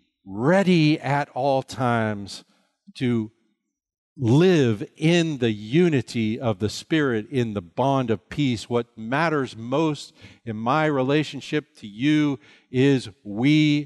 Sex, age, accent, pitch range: male, 50-69, American, 100-135 Hz